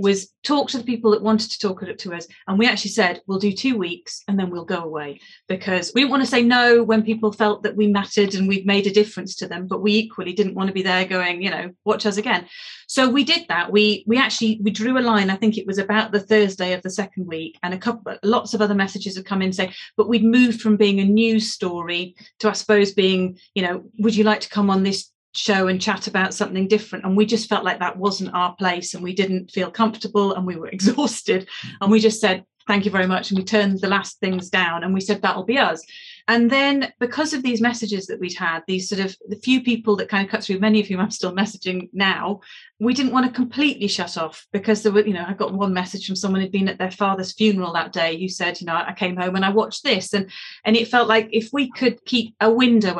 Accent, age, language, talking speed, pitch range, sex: British, 40-59, English, 265 wpm, 185-220 Hz, female